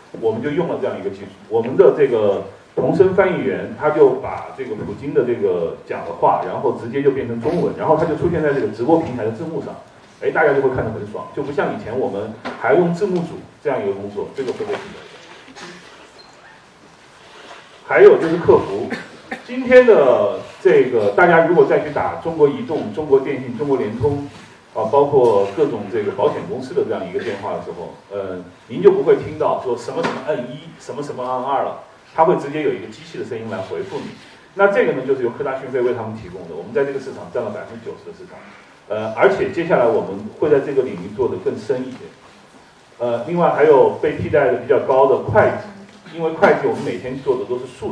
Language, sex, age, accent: Chinese, male, 30-49, native